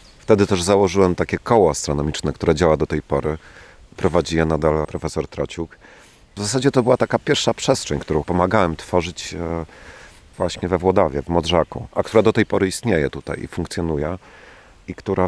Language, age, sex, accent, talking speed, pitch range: Polish, 30-49, male, native, 165 wpm, 80-95 Hz